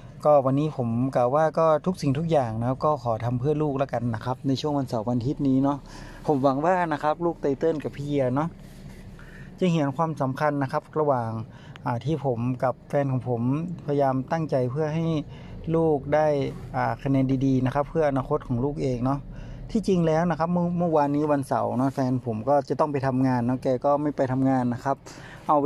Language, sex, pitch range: Thai, male, 130-155 Hz